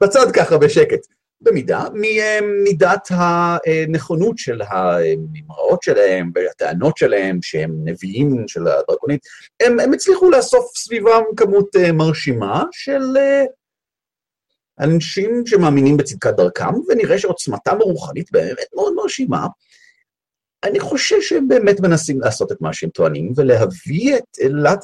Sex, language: male, Hebrew